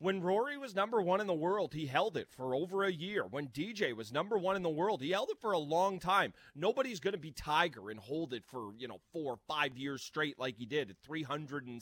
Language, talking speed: English, 265 wpm